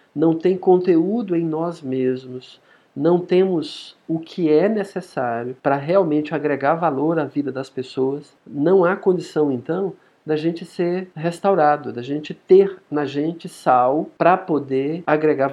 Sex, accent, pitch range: male, Brazilian, 140-185 Hz